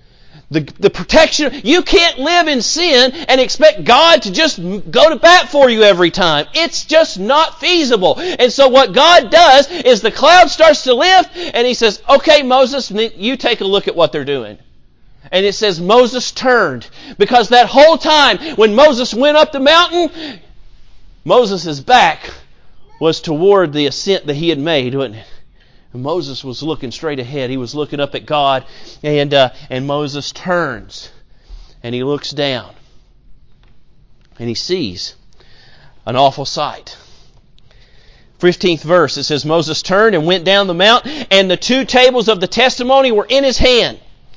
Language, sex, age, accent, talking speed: English, male, 40-59, American, 165 wpm